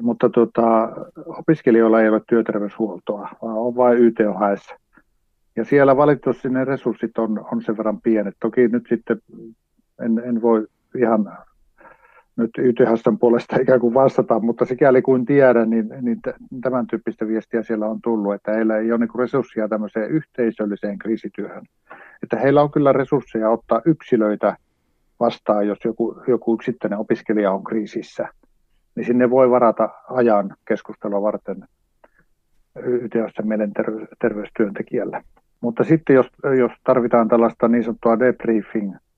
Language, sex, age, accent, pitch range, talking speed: Finnish, male, 50-69, native, 110-125 Hz, 135 wpm